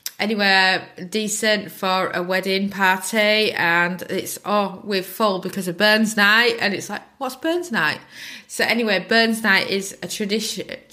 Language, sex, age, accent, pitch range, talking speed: English, female, 20-39, British, 180-225 Hz, 155 wpm